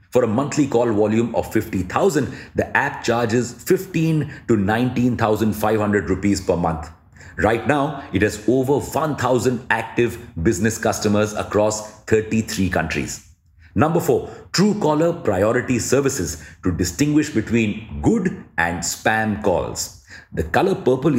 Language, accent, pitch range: English, Indian, 95-125 Hz